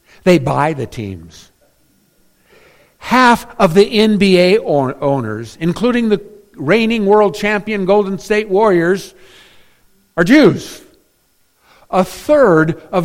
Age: 50-69